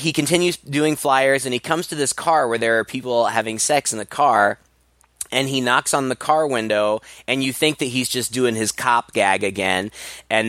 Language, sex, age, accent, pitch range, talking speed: English, male, 20-39, American, 110-145 Hz, 215 wpm